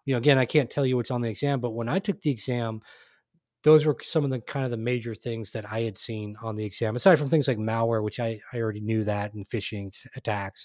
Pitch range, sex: 115-150 Hz, male